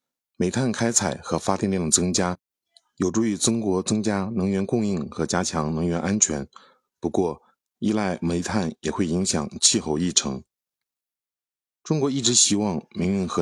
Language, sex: Chinese, male